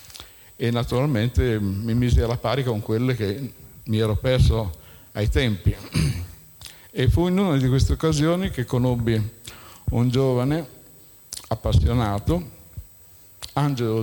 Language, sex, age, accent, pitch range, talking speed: Italian, male, 60-79, native, 100-125 Hz, 115 wpm